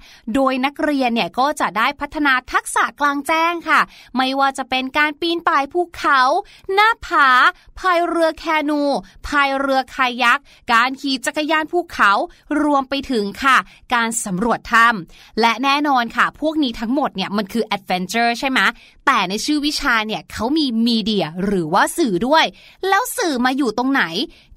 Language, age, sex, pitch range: Thai, 20-39, female, 230-320 Hz